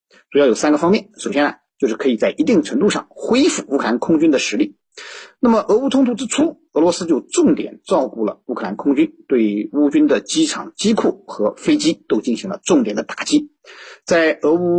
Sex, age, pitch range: male, 50-69, 195-305 Hz